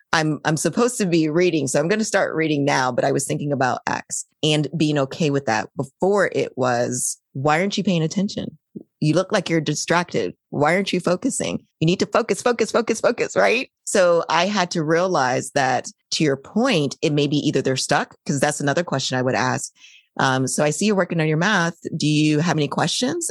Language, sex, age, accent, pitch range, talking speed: English, female, 30-49, American, 135-170 Hz, 220 wpm